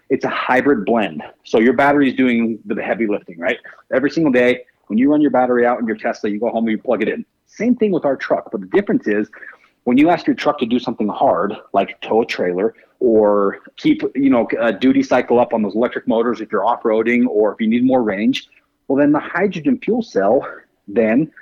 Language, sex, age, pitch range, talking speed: English, male, 40-59, 120-180 Hz, 235 wpm